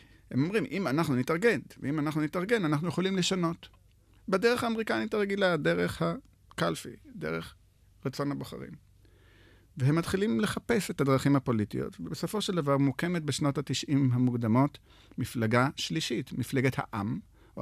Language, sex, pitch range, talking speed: Hebrew, male, 105-155 Hz, 125 wpm